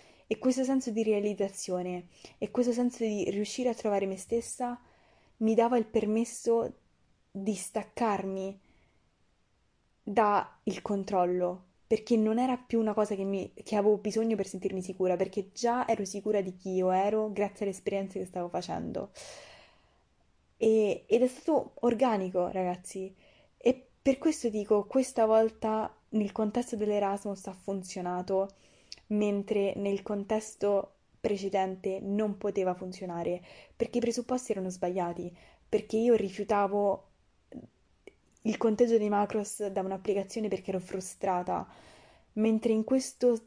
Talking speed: 130 wpm